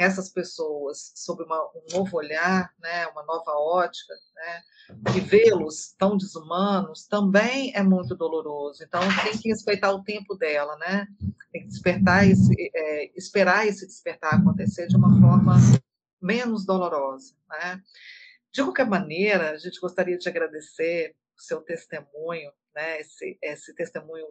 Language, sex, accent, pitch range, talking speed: Portuguese, female, Brazilian, 160-205 Hz, 145 wpm